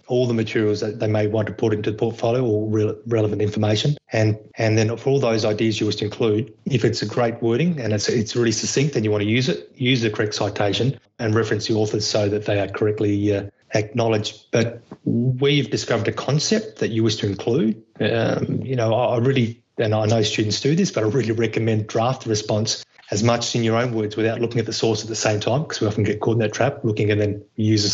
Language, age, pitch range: English, 30-49, 105-120 Hz